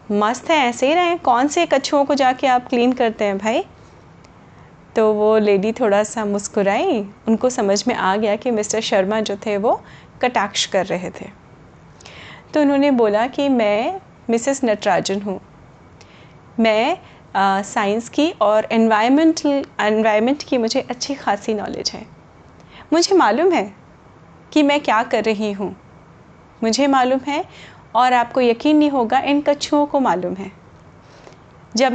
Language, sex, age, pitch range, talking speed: Hindi, female, 30-49, 215-275 Hz, 150 wpm